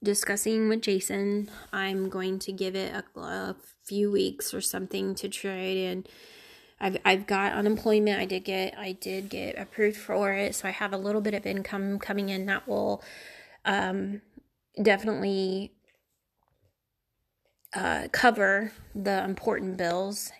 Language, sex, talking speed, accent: English, female, 145 wpm, American